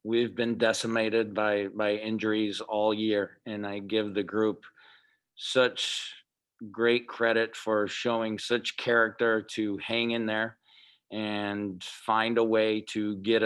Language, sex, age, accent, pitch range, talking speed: English, male, 40-59, American, 105-115 Hz, 135 wpm